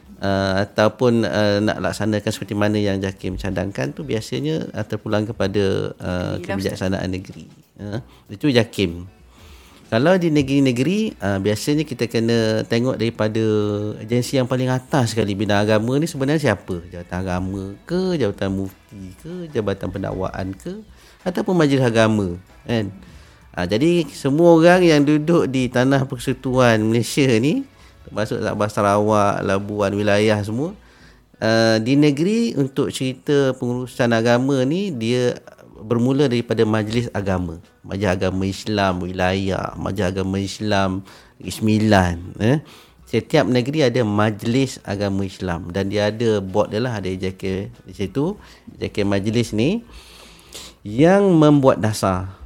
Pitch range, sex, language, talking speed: 95-130 Hz, male, Malay, 130 wpm